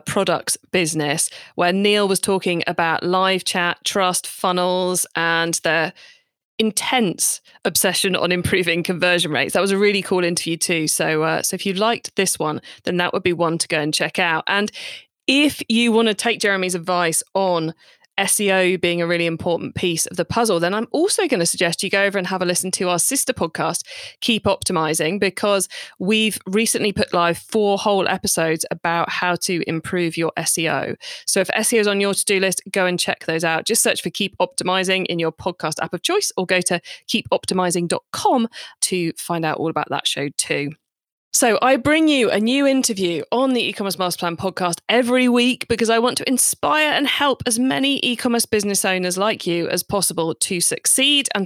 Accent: British